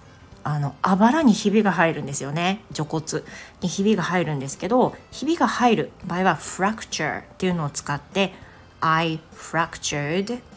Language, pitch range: Japanese, 145-195 Hz